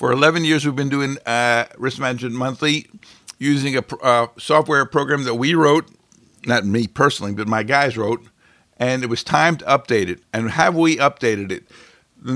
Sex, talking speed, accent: male, 185 wpm, American